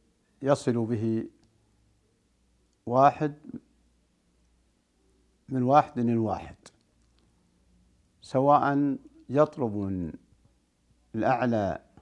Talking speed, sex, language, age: 55 wpm, male, Arabic, 60-79